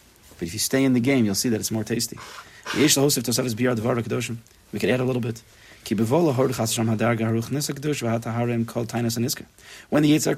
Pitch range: 110-140 Hz